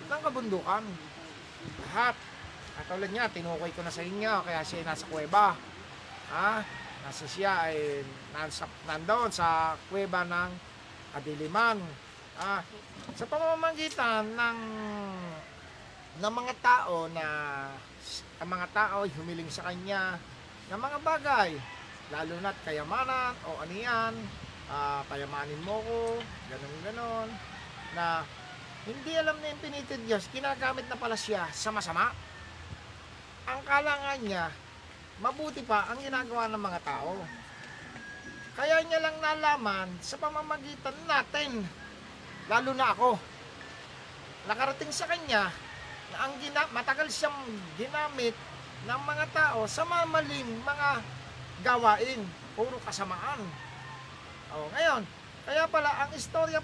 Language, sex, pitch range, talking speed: English, male, 165-265 Hz, 115 wpm